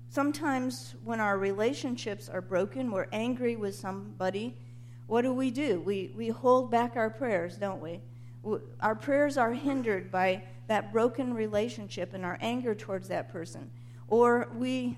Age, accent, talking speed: 50-69, American, 150 wpm